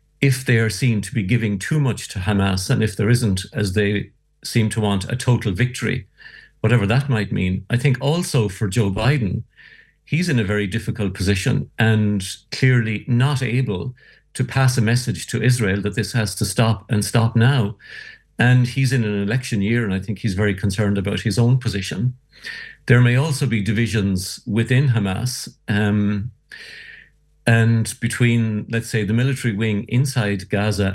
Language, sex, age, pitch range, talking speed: English, male, 50-69, 105-125 Hz, 175 wpm